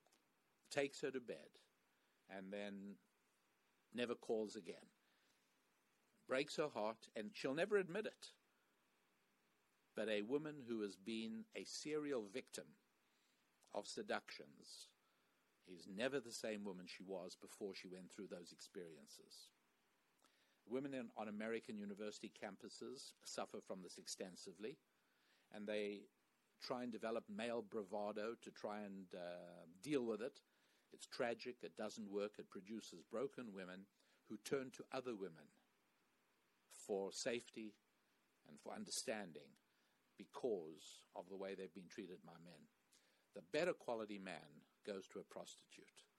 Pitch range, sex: 95-120 Hz, male